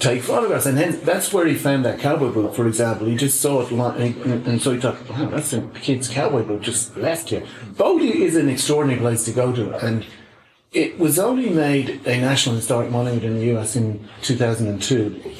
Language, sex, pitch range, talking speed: English, male, 115-140 Hz, 210 wpm